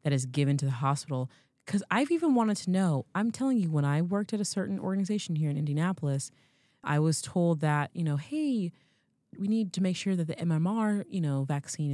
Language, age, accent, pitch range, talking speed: English, 20-39, American, 140-195 Hz, 215 wpm